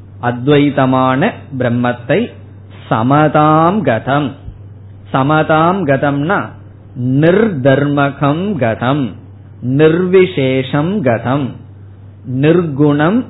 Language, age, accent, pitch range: Tamil, 20-39, native, 110-150 Hz